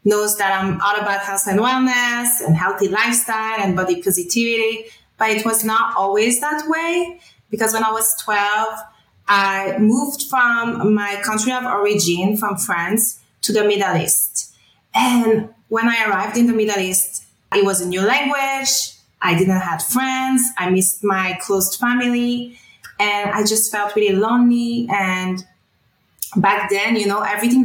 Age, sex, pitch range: 20-39, female, 190-225 Hz